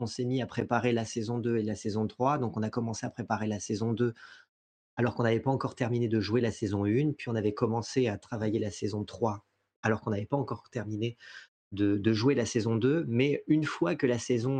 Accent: French